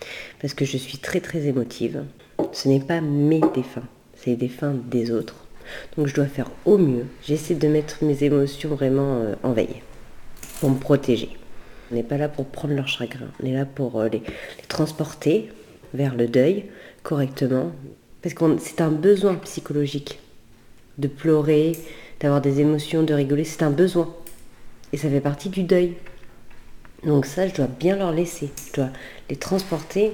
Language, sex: French, female